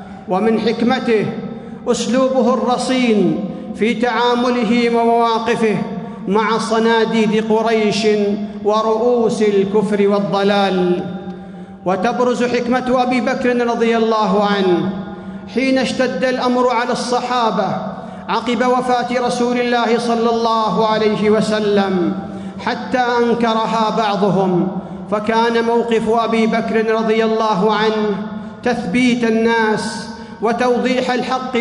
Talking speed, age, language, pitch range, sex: 90 wpm, 50-69, Arabic, 210-240 Hz, male